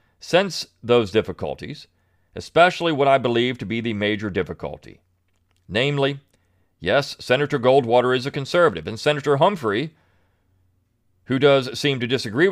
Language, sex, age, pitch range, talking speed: English, male, 40-59, 95-145 Hz, 130 wpm